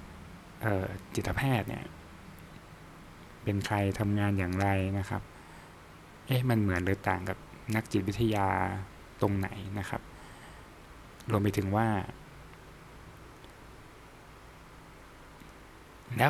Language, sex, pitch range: Thai, male, 95-115 Hz